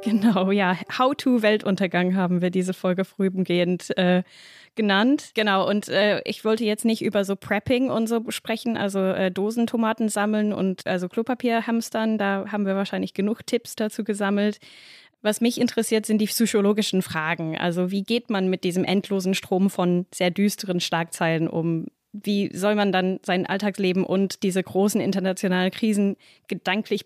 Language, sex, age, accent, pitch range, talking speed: German, female, 10-29, German, 185-220 Hz, 155 wpm